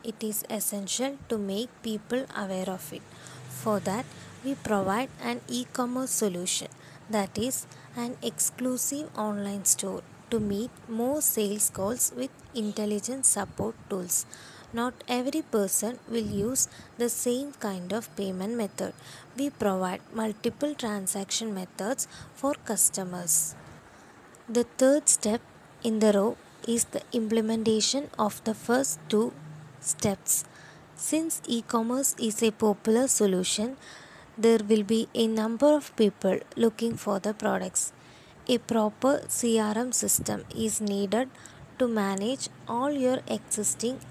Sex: female